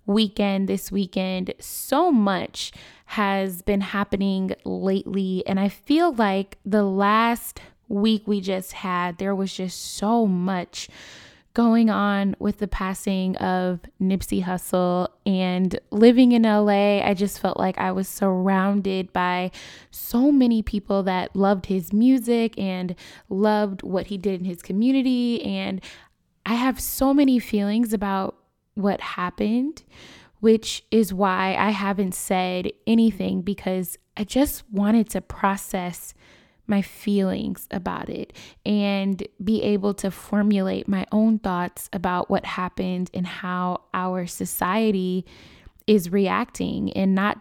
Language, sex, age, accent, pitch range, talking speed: English, female, 10-29, American, 190-215 Hz, 130 wpm